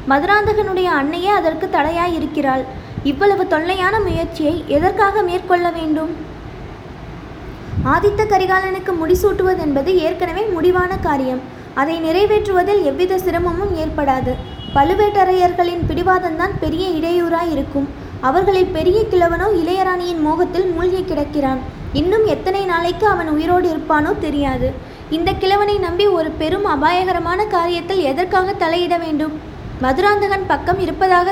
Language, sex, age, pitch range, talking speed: Tamil, female, 20-39, 310-375 Hz, 105 wpm